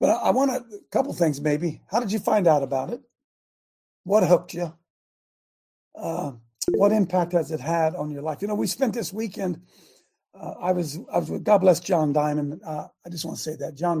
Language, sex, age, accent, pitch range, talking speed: English, male, 50-69, American, 145-175 Hz, 215 wpm